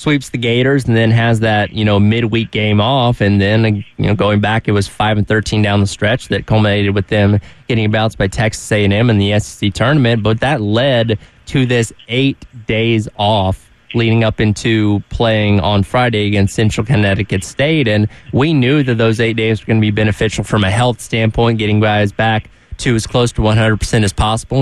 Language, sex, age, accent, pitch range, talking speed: English, male, 20-39, American, 105-120 Hz, 200 wpm